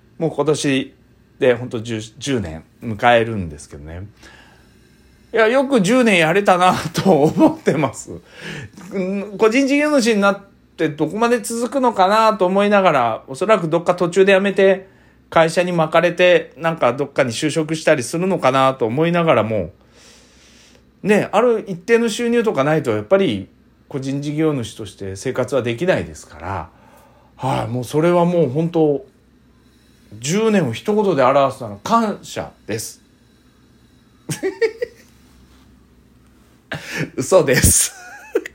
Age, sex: 40-59, male